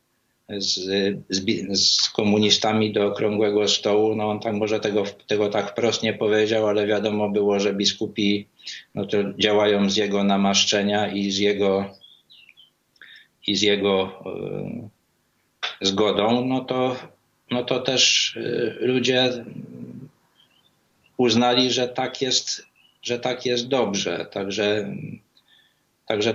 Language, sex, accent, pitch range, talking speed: Polish, male, native, 105-120 Hz, 120 wpm